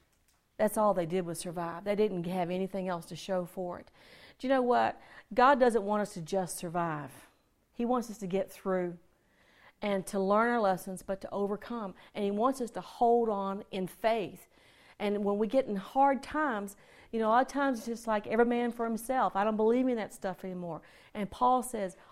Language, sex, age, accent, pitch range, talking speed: English, female, 40-59, American, 195-245 Hz, 215 wpm